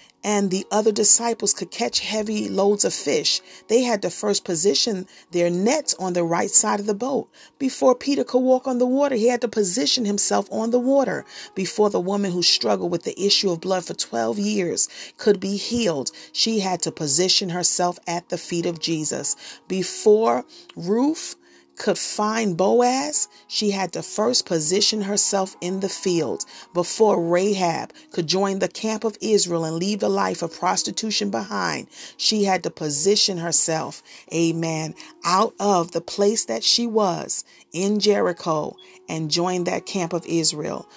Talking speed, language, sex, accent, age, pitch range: 170 wpm, English, female, American, 40-59, 170-205 Hz